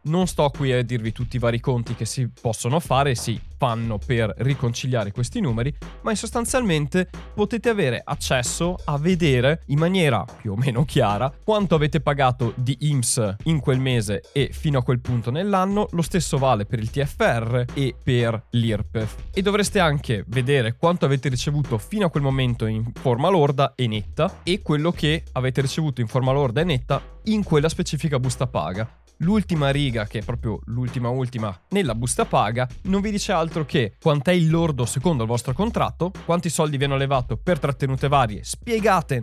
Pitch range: 120-165 Hz